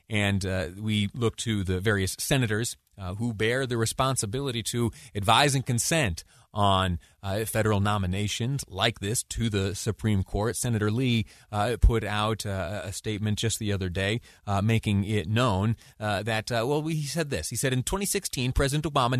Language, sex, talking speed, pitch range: English, male, 175 wpm, 105-130 Hz